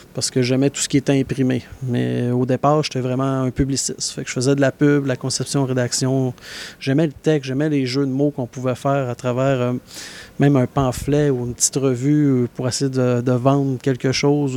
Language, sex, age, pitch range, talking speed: French, male, 30-49, 125-140 Hz, 225 wpm